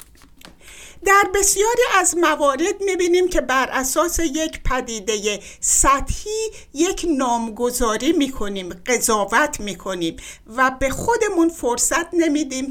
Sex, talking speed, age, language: female, 100 wpm, 60-79, Persian